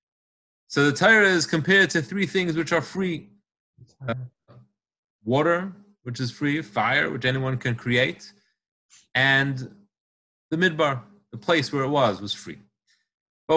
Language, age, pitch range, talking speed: English, 30-49, 125-170 Hz, 140 wpm